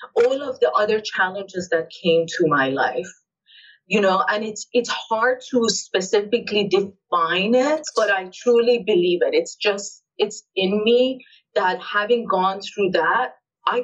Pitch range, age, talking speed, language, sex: 175-255 Hz, 30-49, 155 wpm, English, female